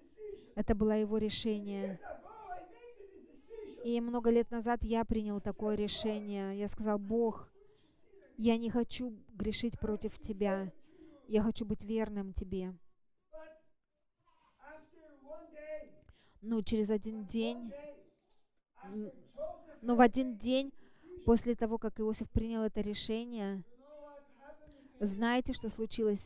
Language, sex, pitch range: English, female, 200-260 Hz